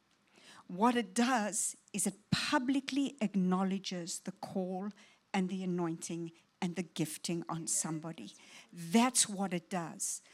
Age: 60-79